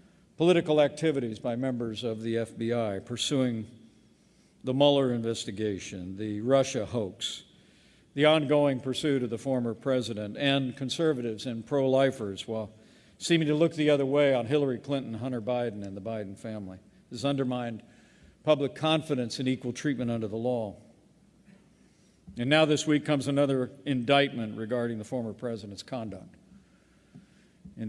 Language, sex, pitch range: English, male, 115-150 Hz